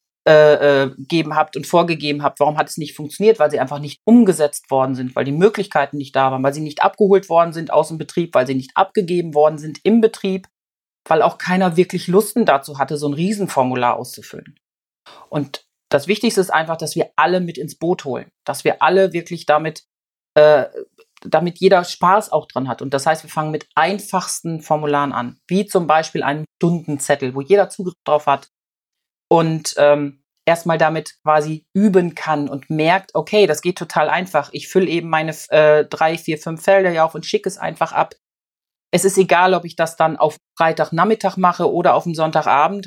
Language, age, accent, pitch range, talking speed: German, 40-59, German, 150-185 Hz, 195 wpm